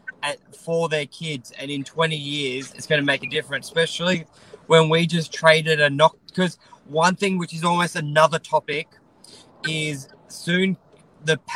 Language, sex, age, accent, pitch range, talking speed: English, male, 20-39, Australian, 145-170 Hz, 165 wpm